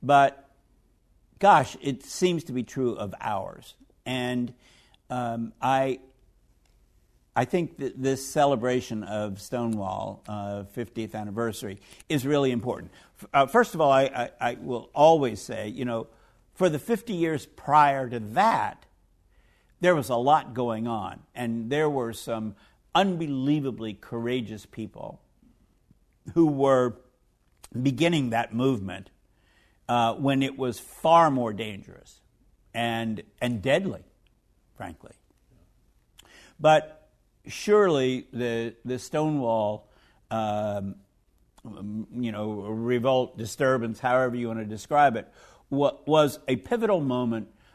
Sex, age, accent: male, 60-79, American